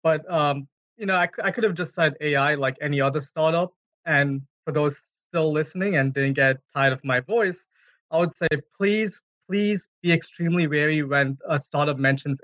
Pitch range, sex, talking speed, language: 135-170 Hz, male, 190 wpm, English